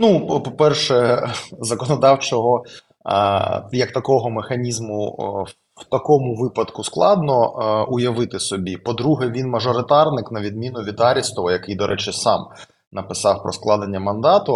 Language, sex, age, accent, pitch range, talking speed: Ukrainian, male, 20-39, native, 110-135 Hz, 110 wpm